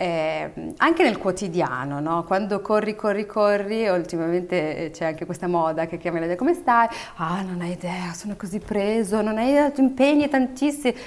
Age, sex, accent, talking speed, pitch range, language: 30-49, female, native, 175 wpm, 170-210 Hz, Italian